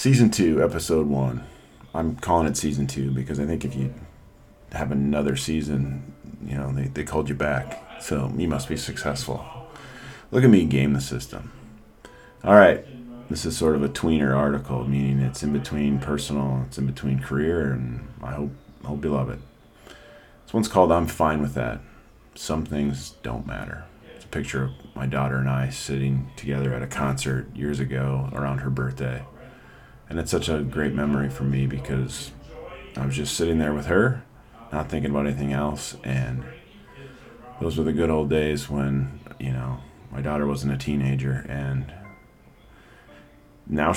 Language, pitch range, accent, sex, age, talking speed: English, 65-80 Hz, American, male, 40-59, 170 wpm